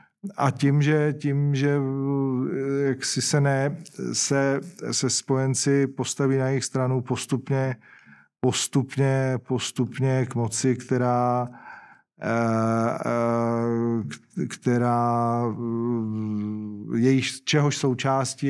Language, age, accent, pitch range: Czech, 40-59, native, 115-135 Hz